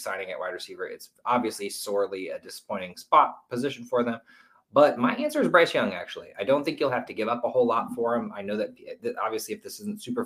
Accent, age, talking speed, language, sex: American, 20-39, 245 wpm, English, male